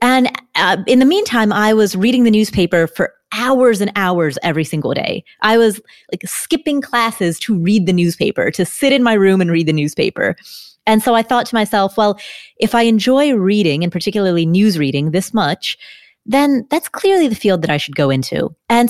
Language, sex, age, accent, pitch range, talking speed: English, female, 30-49, American, 170-235 Hz, 200 wpm